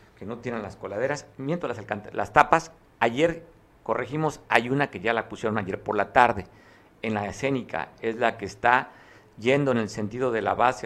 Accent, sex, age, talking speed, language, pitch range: Mexican, male, 50-69, 200 wpm, Spanish, 105-135 Hz